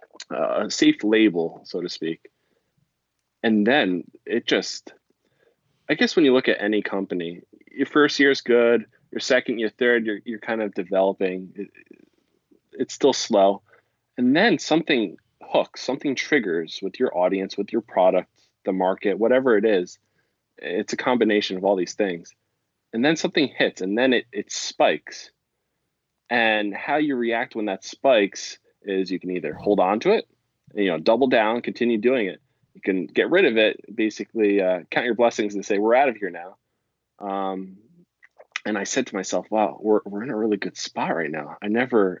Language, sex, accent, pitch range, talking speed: English, male, American, 95-115 Hz, 180 wpm